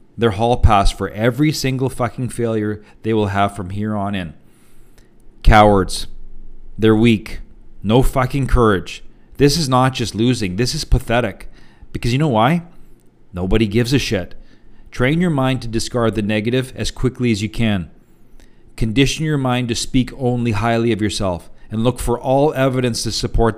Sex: male